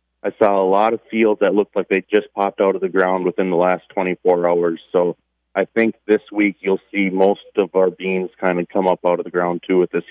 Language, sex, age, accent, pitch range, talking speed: English, male, 30-49, American, 90-110 Hz, 255 wpm